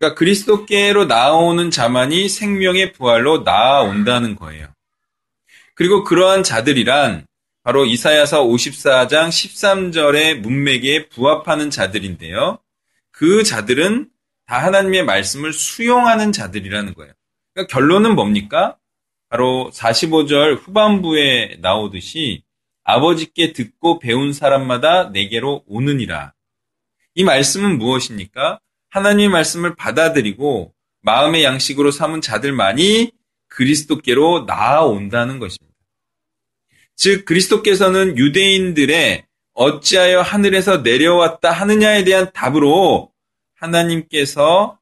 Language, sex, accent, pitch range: Korean, male, native, 130-190 Hz